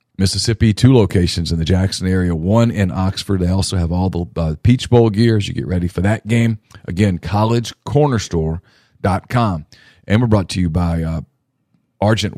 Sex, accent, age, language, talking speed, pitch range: male, American, 40-59, English, 175 wpm, 90-110 Hz